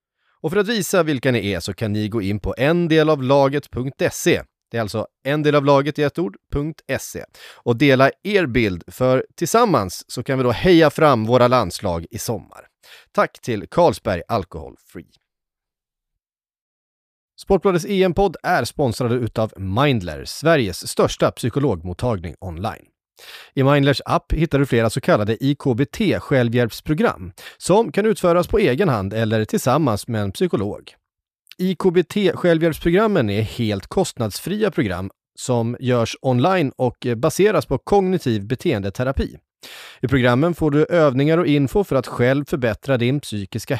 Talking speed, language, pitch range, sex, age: 135 wpm, Swedish, 115-165 Hz, male, 30-49